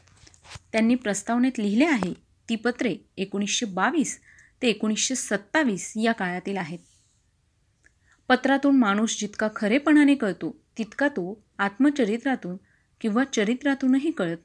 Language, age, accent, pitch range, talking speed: Marathi, 30-49, native, 205-260 Hz, 105 wpm